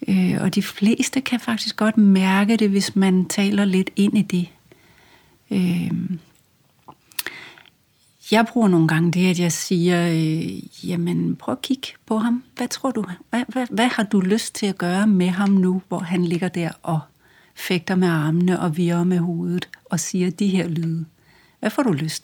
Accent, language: native, Danish